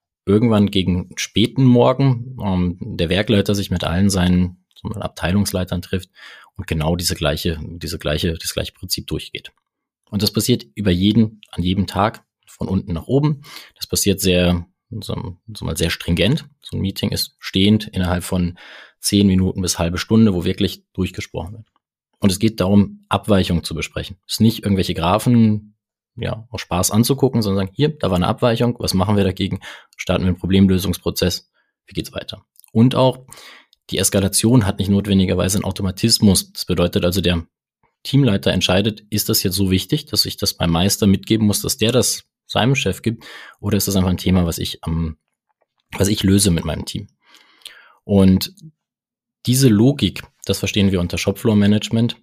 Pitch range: 90-110 Hz